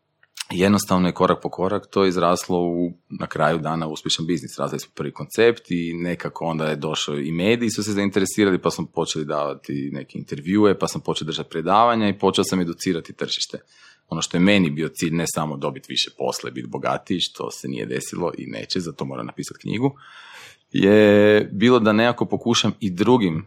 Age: 30-49